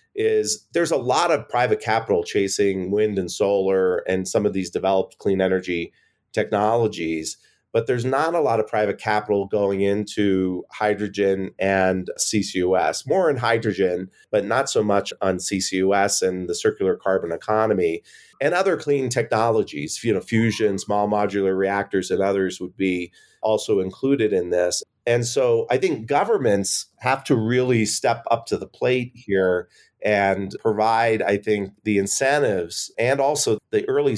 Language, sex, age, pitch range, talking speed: English, male, 30-49, 95-120 Hz, 155 wpm